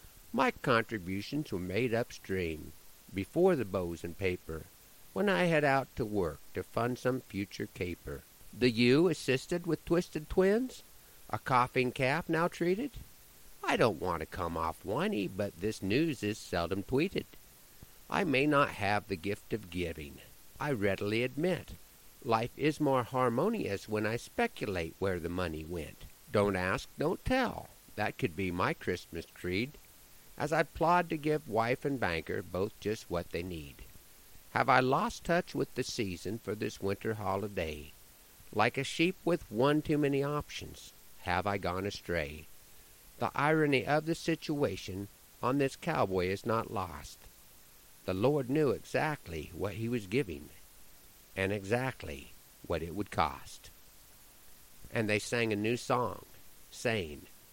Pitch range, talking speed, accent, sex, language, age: 95-135 Hz, 150 wpm, American, male, English, 50-69